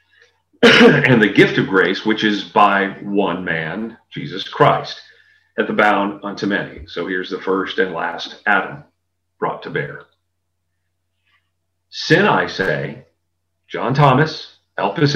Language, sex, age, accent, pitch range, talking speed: English, male, 40-59, American, 95-140 Hz, 130 wpm